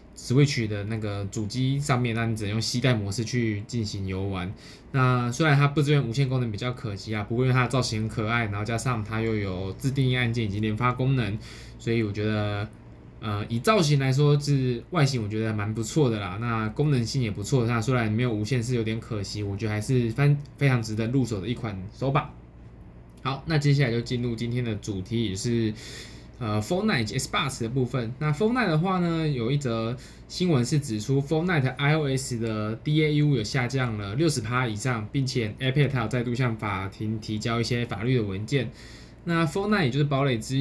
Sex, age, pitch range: male, 20-39, 110-135 Hz